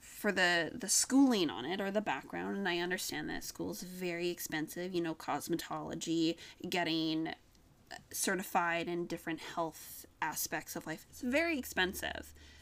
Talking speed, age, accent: 145 wpm, 20-39, American